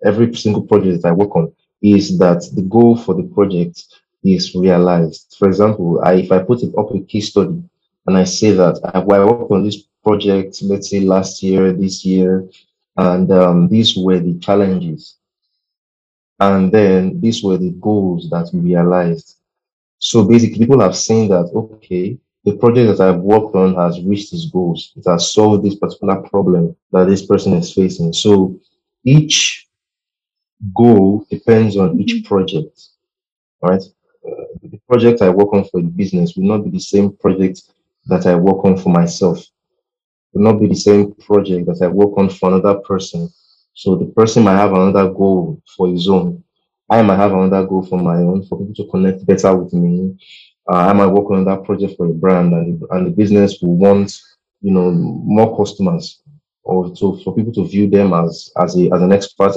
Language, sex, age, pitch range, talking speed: English, male, 30-49, 90-105 Hz, 185 wpm